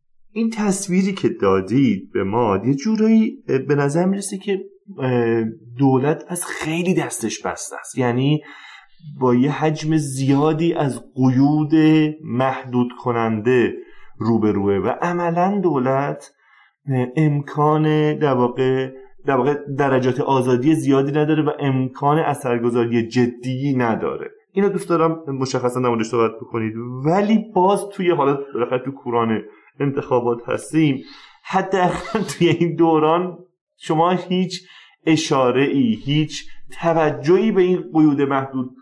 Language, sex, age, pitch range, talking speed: Persian, male, 30-49, 125-175 Hz, 115 wpm